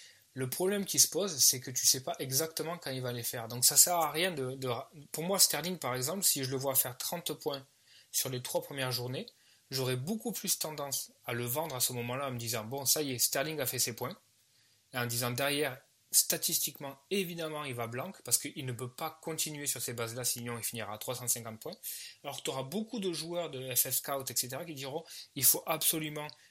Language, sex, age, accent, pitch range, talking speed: French, male, 20-39, French, 125-155 Hz, 245 wpm